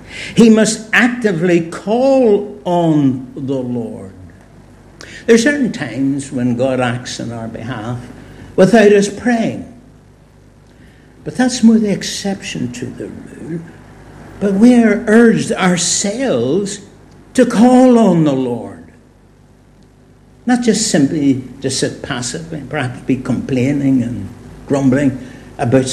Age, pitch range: 60-79, 130-215 Hz